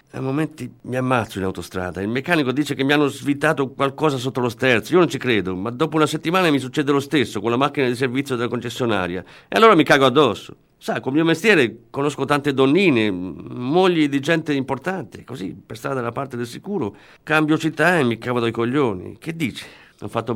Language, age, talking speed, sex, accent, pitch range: Italian, 50-69, 205 wpm, male, native, 100-150 Hz